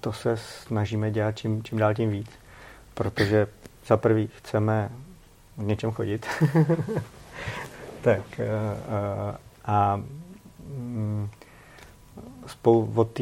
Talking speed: 95 wpm